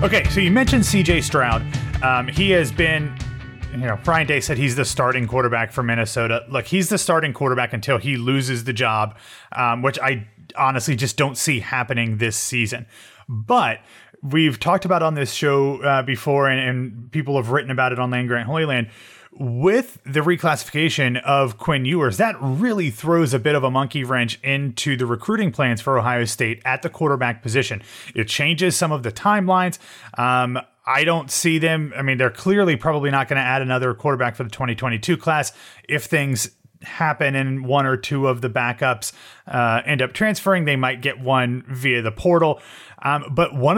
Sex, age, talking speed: male, 30-49, 190 wpm